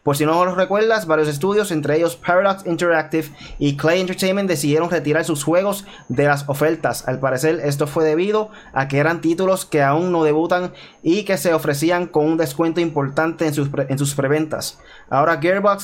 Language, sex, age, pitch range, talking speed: Spanish, male, 20-39, 140-170 Hz, 180 wpm